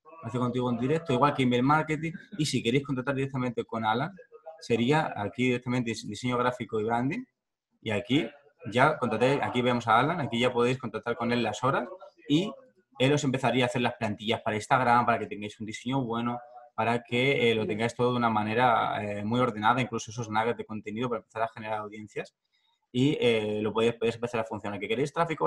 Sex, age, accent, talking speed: male, 20-39, Spanish, 205 wpm